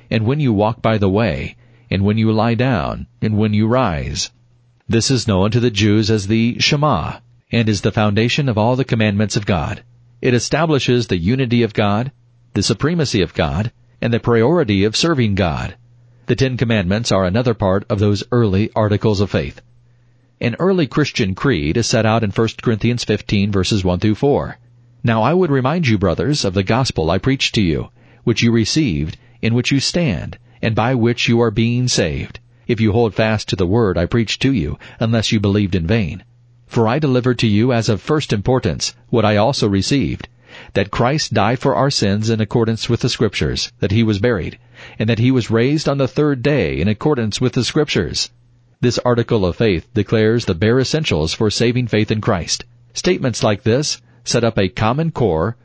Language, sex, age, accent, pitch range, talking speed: English, male, 40-59, American, 105-125 Hz, 195 wpm